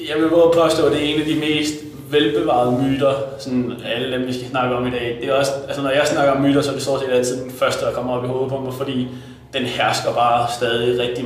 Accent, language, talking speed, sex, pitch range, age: native, Danish, 260 wpm, male, 125-150 Hz, 20-39